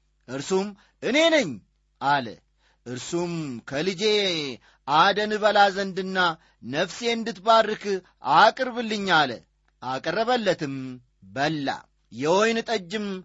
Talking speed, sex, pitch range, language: 70 wpm, male, 155-220 Hz, Amharic